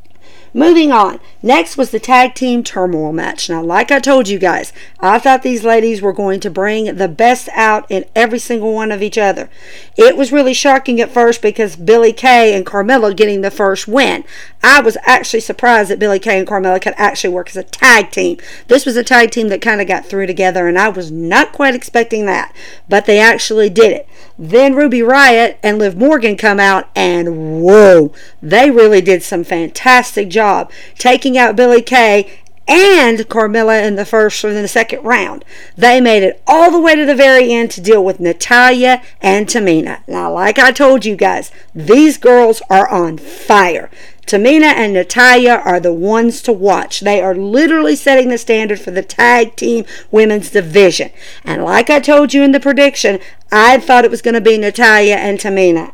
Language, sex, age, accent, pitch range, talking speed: English, female, 50-69, American, 195-245 Hz, 195 wpm